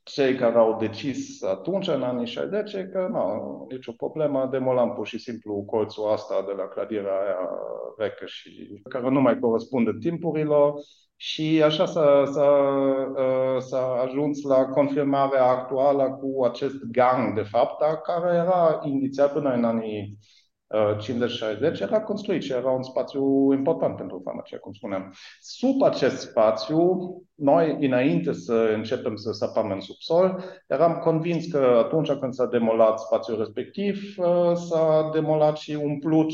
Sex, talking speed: male, 140 wpm